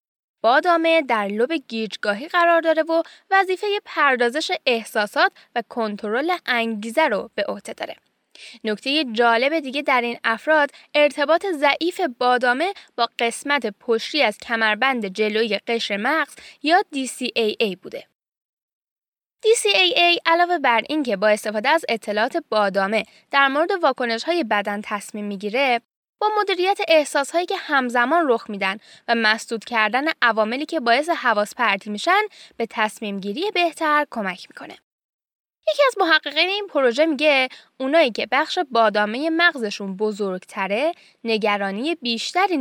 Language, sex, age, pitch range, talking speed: Persian, female, 10-29, 220-325 Hz, 125 wpm